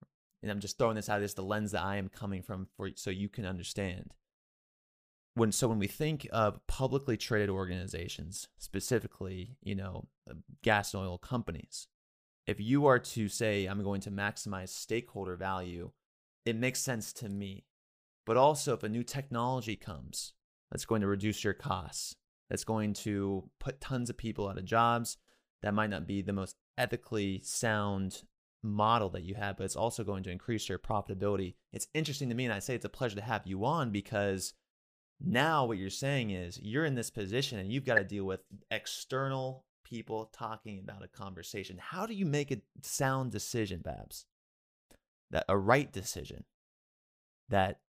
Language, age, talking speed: English, 20-39, 180 wpm